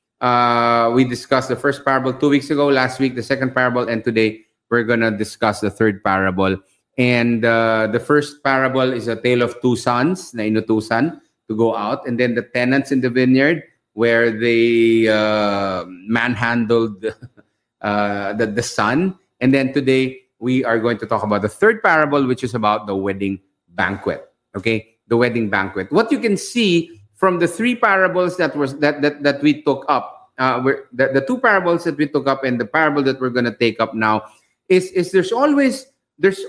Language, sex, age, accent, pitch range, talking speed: English, male, 30-49, Filipino, 115-160 Hz, 190 wpm